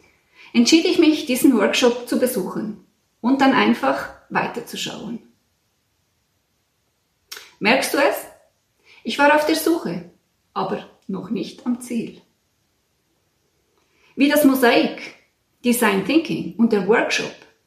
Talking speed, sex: 110 wpm, female